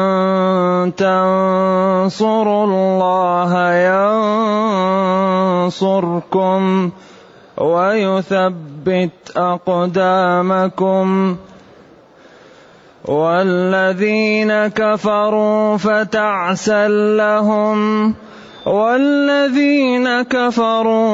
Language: Arabic